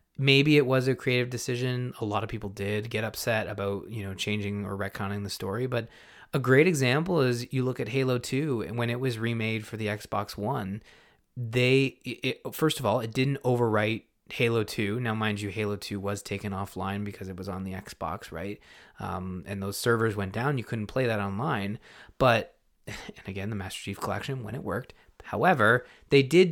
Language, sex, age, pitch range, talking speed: English, male, 20-39, 100-130 Hz, 200 wpm